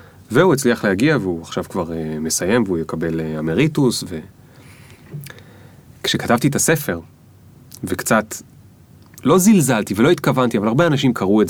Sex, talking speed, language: male, 130 wpm, Hebrew